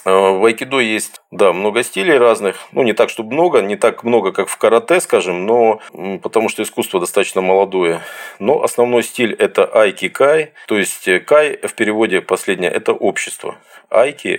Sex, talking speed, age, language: male, 165 wpm, 40-59, Russian